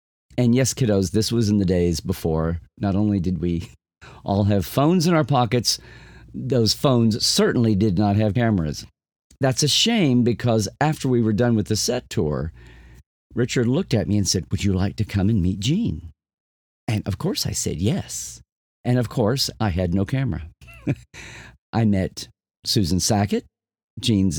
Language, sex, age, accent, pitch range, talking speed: English, male, 50-69, American, 95-130 Hz, 170 wpm